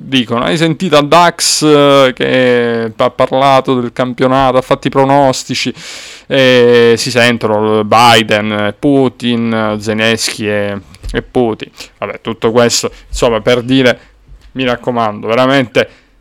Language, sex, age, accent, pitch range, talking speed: Italian, male, 20-39, native, 110-130 Hz, 120 wpm